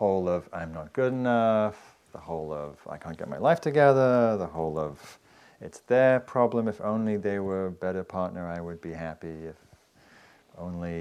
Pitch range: 80-100 Hz